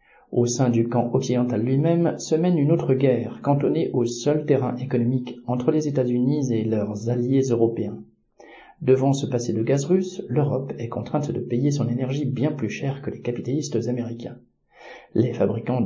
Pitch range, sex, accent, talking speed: 120-145 Hz, male, French, 170 wpm